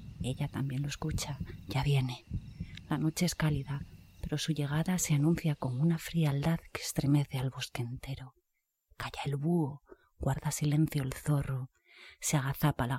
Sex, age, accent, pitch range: female, 30-49, Spanish, 140-170 Hz